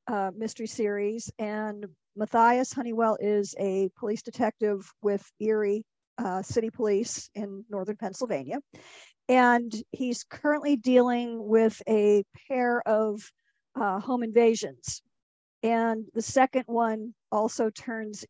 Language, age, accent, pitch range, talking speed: English, 50-69, American, 200-235 Hz, 115 wpm